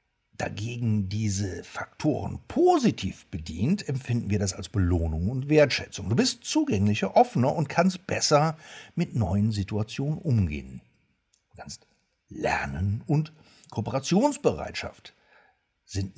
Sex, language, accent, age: male, German, German, 60-79